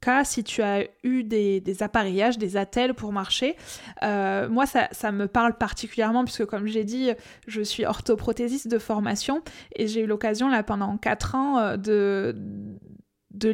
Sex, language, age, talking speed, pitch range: female, French, 20-39, 175 wpm, 210-245 Hz